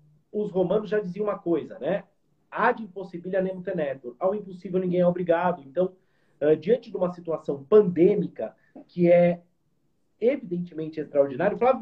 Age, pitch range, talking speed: 40-59, 160-195 Hz, 140 wpm